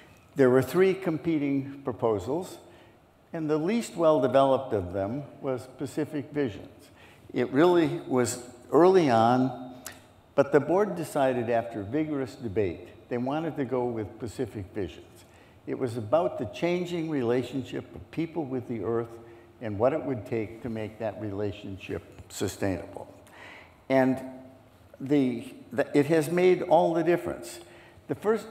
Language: English